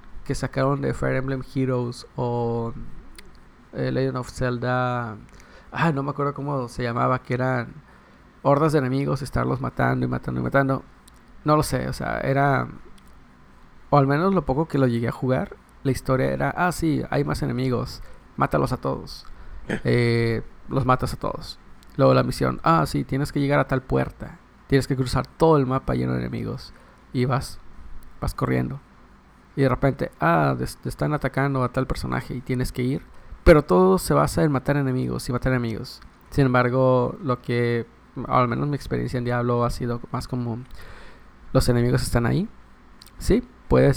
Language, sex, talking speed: Spanish, male, 175 wpm